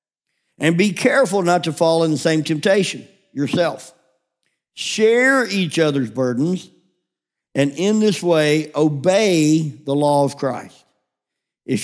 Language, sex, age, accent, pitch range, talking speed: English, male, 50-69, American, 140-195 Hz, 125 wpm